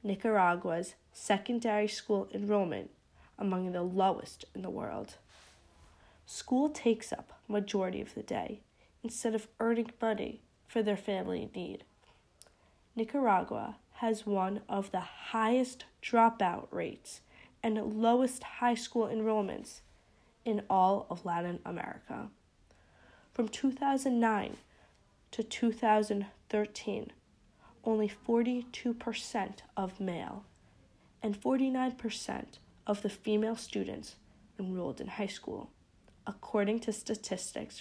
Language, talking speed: English, 100 wpm